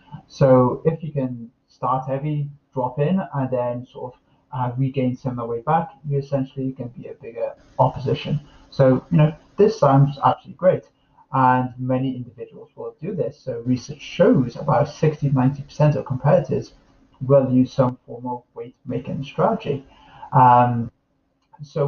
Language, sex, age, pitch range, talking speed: English, male, 30-49, 125-145 Hz, 155 wpm